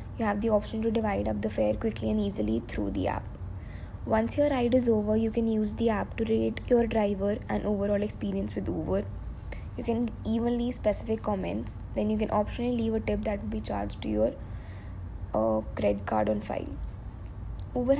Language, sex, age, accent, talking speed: English, female, 20-39, Indian, 195 wpm